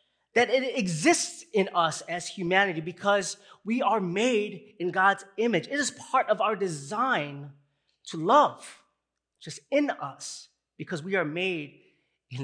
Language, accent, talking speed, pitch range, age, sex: English, American, 145 wpm, 150-220 Hz, 30-49, male